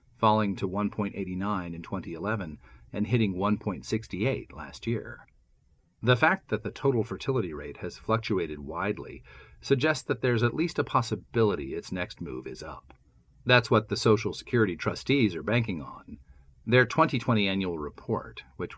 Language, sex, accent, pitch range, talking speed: English, male, American, 90-120 Hz, 145 wpm